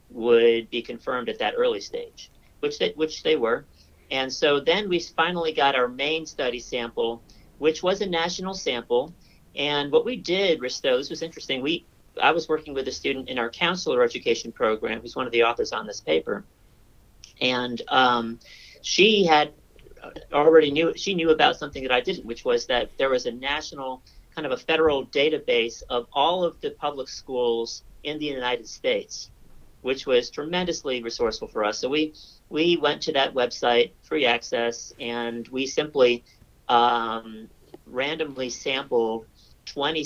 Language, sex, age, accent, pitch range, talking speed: English, male, 40-59, American, 120-190 Hz, 170 wpm